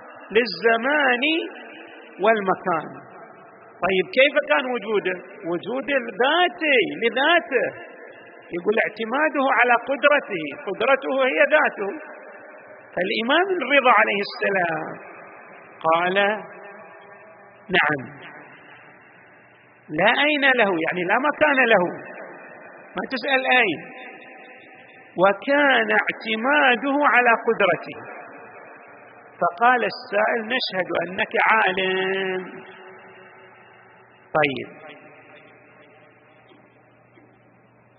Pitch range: 195-275 Hz